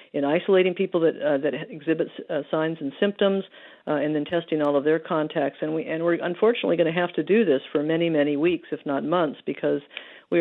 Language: English